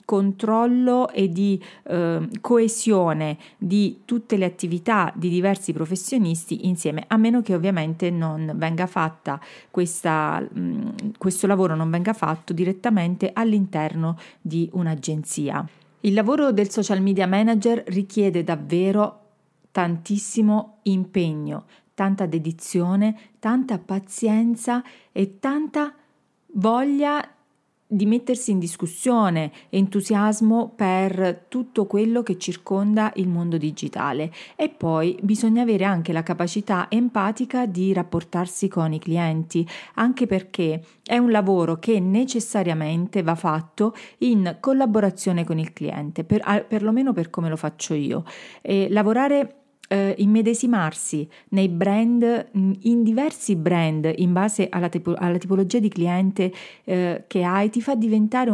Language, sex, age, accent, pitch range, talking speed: Italian, female, 40-59, native, 175-220 Hz, 115 wpm